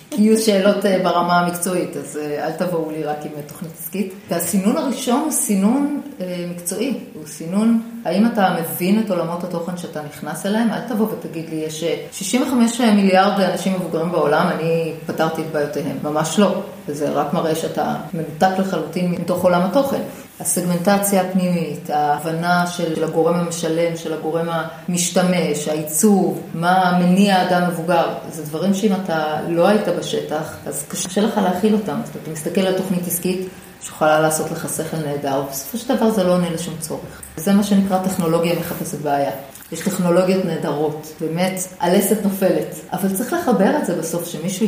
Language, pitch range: Hebrew, 160-200 Hz